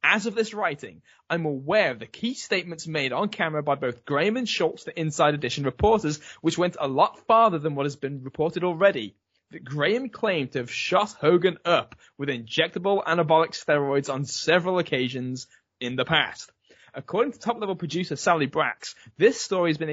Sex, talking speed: male, 185 wpm